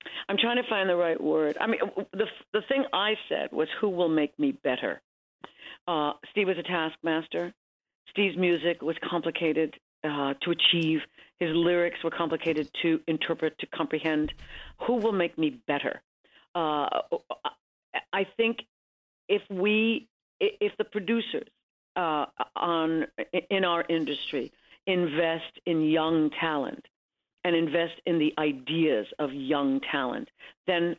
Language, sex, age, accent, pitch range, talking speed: English, female, 50-69, American, 160-205 Hz, 135 wpm